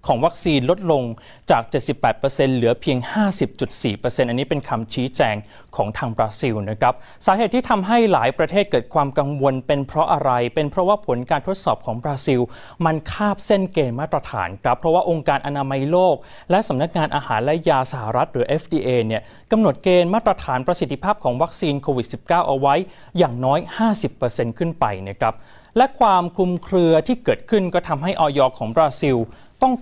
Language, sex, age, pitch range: Thai, male, 20-39, 125-175 Hz